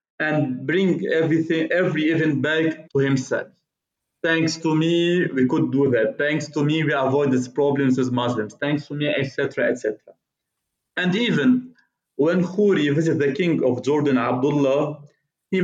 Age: 40-59